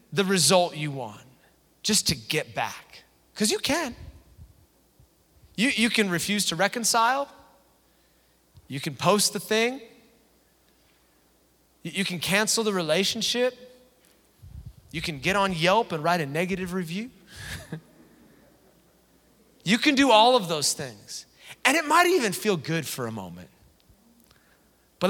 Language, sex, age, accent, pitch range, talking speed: English, male, 30-49, American, 150-210 Hz, 130 wpm